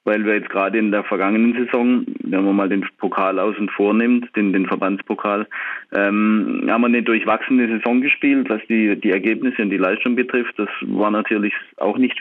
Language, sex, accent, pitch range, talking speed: German, male, German, 100-120 Hz, 190 wpm